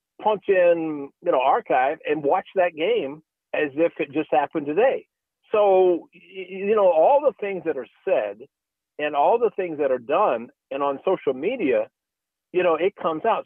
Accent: American